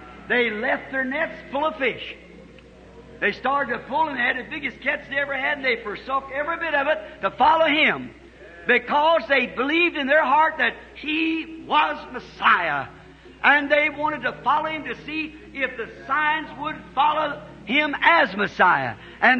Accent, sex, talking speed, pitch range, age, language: American, male, 175 wpm, 240-300 Hz, 60-79, English